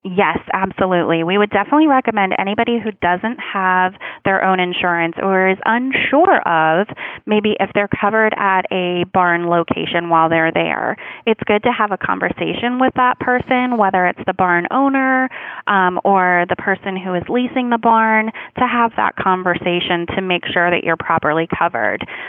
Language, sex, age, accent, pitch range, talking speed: English, female, 20-39, American, 180-230 Hz, 165 wpm